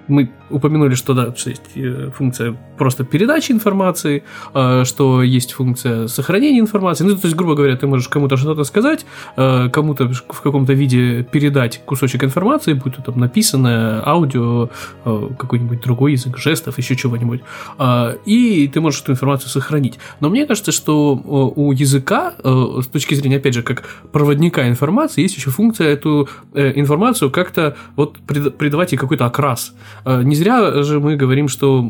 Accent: native